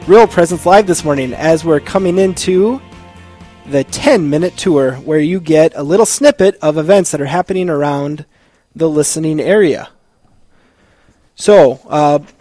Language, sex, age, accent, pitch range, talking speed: English, male, 20-39, American, 150-185 Hz, 140 wpm